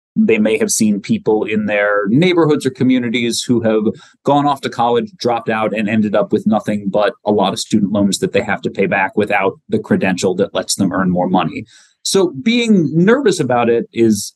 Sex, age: male, 30-49